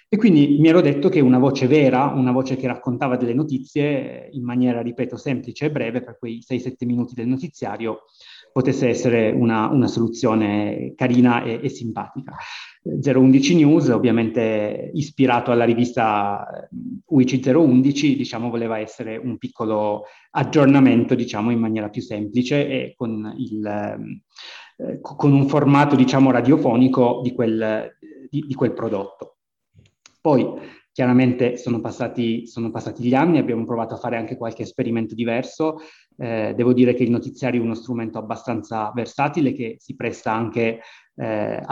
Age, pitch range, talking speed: 30-49, 115-130 Hz, 145 wpm